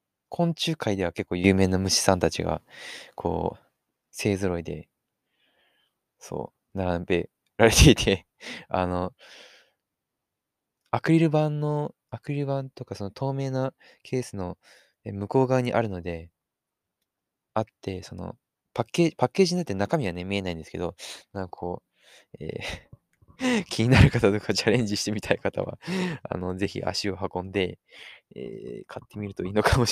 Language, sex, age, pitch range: English, male, 20-39, 90-115 Hz